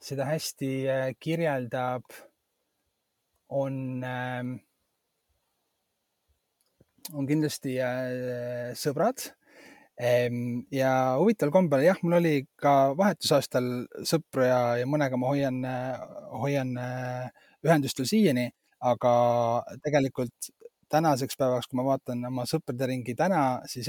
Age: 30-49